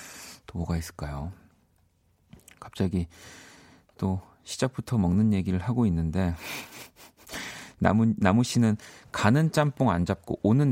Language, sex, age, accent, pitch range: Korean, male, 40-59, native, 90-120 Hz